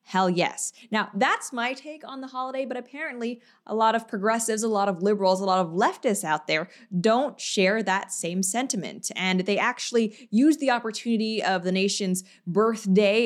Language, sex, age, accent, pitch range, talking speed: English, female, 20-39, American, 205-275 Hz, 180 wpm